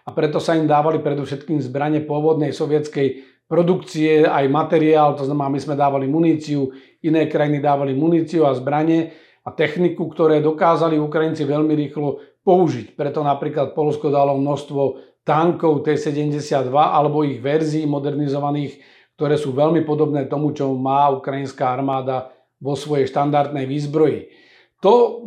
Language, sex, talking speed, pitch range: Slovak, male, 135 wpm, 140-155 Hz